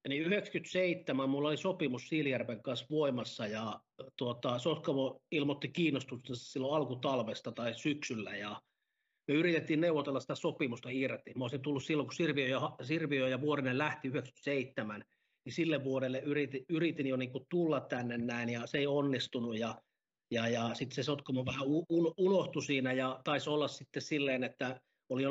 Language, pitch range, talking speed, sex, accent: Finnish, 125-150 Hz, 155 wpm, male, native